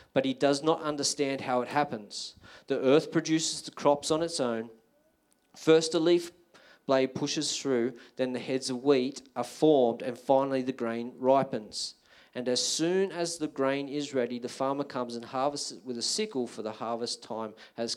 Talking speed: 185 wpm